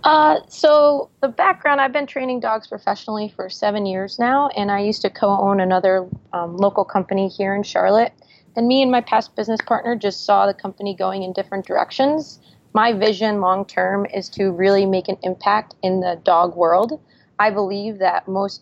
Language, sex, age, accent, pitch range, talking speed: English, female, 30-49, American, 185-220 Hz, 185 wpm